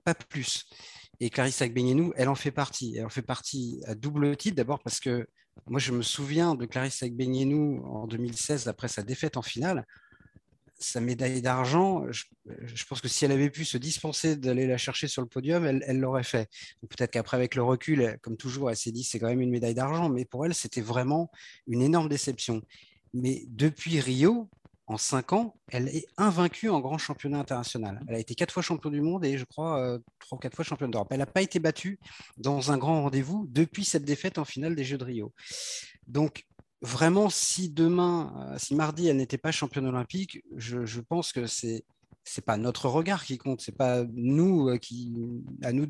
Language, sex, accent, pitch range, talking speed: French, male, French, 125-155 Hz, 210 wpm